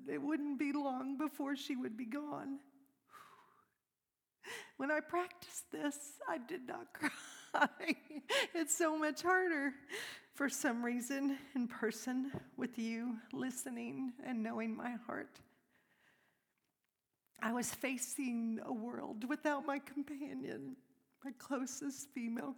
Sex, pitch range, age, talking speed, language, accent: female, 230-285 Hz, 50-69, 115 wpm, English, American